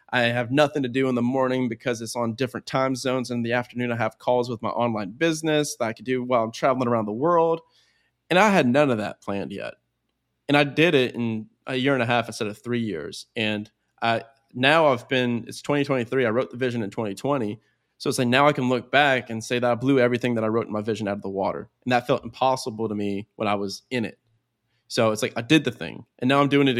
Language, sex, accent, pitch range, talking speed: English, male, American, 110-140 Hz, 260 wpm